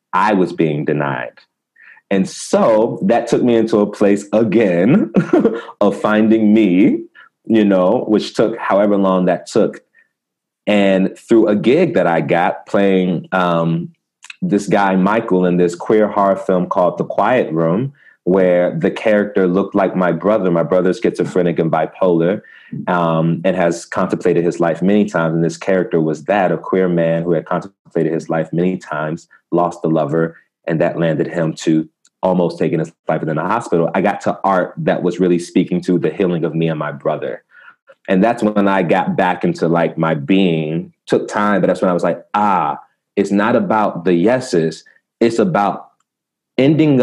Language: English